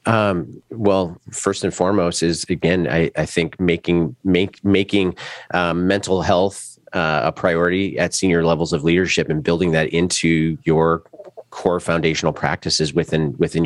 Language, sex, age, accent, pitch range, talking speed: English, male, 30-49, American, 80-90 Hz, 150 wpm